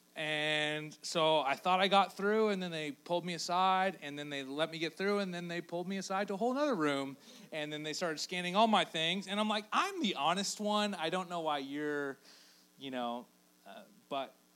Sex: male